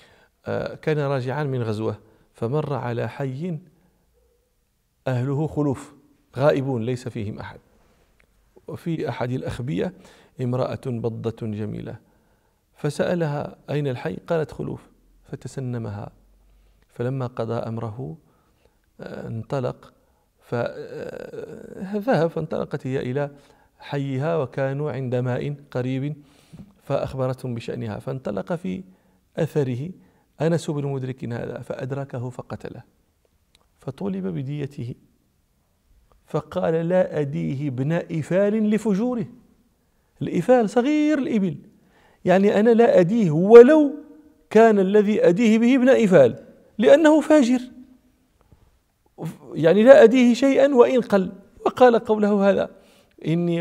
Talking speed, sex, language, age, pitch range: 90 wpm, male, English, 40-59, 130-205 Hz